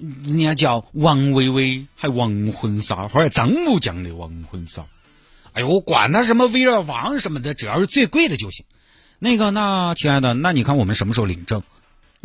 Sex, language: male, Chinese